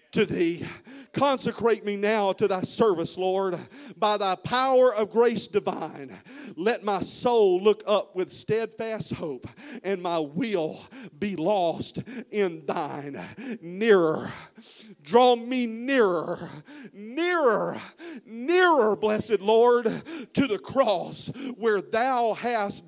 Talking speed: 115 wpm